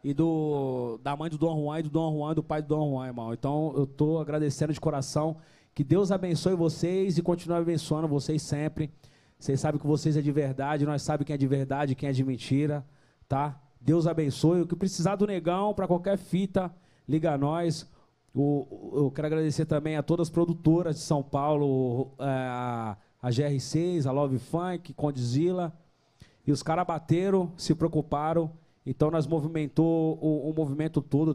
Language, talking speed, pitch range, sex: Portuguese, 180 wpm, 135-160 Hz, male